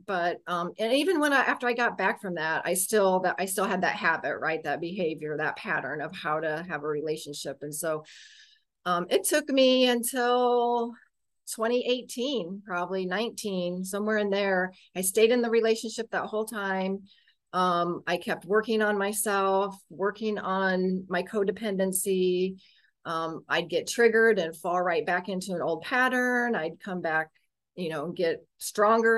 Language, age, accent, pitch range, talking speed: English, 40-59, American, 175-225 Hz, 165 wpm